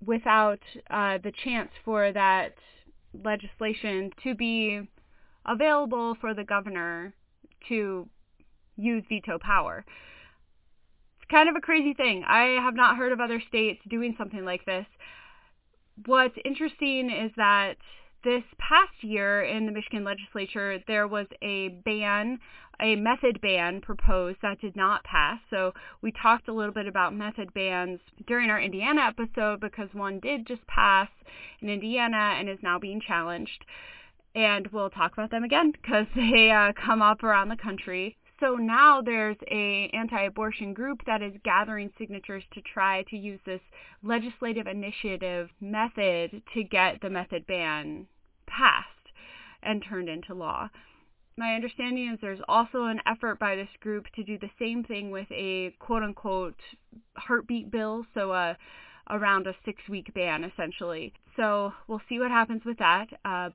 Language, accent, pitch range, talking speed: English, American, 195-235 Hz, 150 wpm